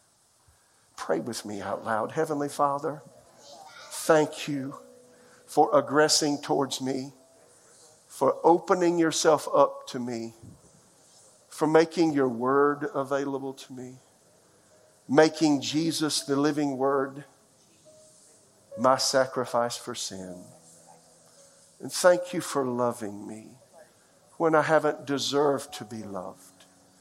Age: 50-69